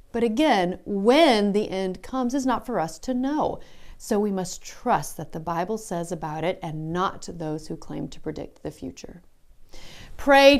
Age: 40-59